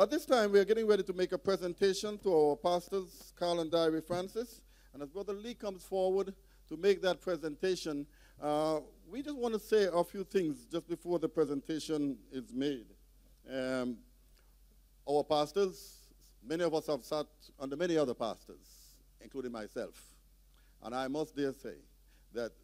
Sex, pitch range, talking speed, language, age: male, 145-190 Hz, 165 wpm, English, 50-69